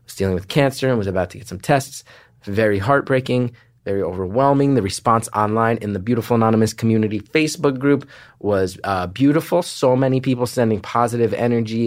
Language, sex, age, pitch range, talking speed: English, male, 30-49, 105-130 Hz, 165 wpm